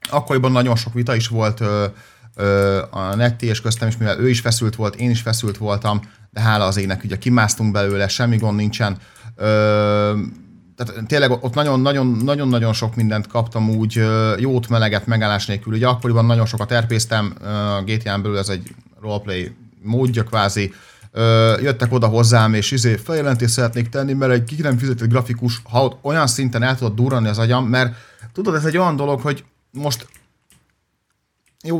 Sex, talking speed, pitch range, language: male, 170 wpm, 110-125 Hz, Hungarian